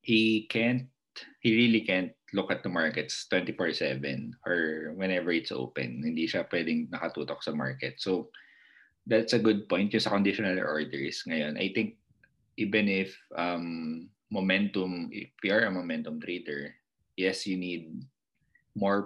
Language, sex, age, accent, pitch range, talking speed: Filipino, male, 20-39, native, 80-105 Hz, 145 wpm